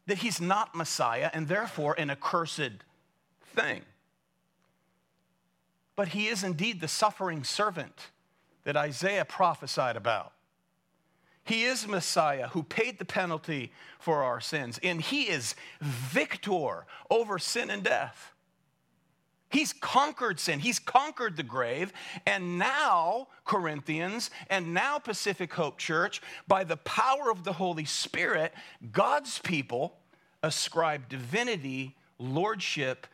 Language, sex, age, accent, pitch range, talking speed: English, male, 40-59, American, 150-205 Hz, 120 wpm